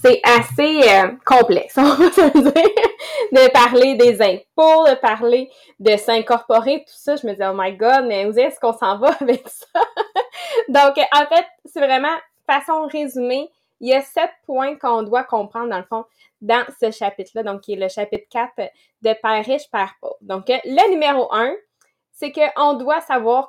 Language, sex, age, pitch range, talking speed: English, female, 20-39, 225-290 Hz, 180 wpm